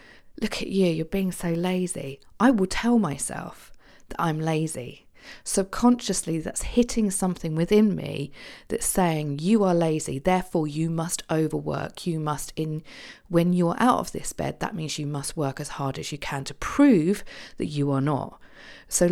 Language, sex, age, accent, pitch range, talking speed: English, female, 40-59, British, 145-185 Hz, 175 wpm